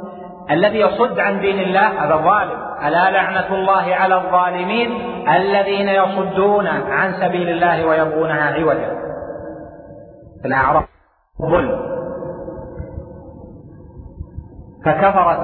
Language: Arabic